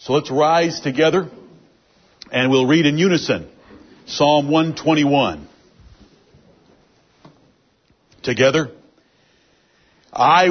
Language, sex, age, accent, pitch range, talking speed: English, male, 60-79, American, 145-175 Hz, 75 wpm